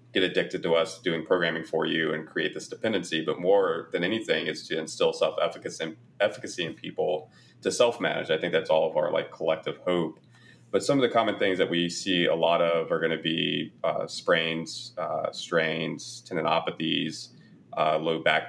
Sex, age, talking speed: male, 30-49, 190 wpm